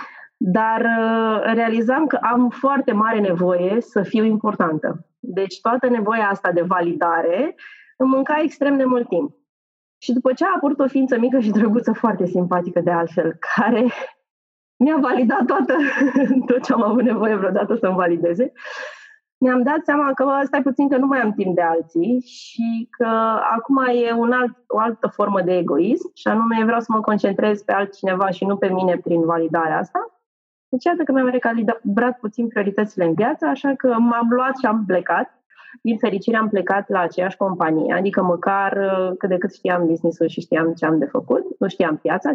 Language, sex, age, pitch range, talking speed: Romanian, female, 20-39, 195-265 Hz, 180 wpm